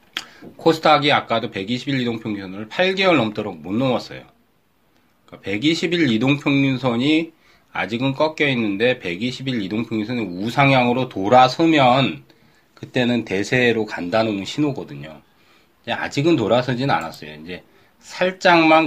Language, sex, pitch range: Korean, male, 105-145 Hz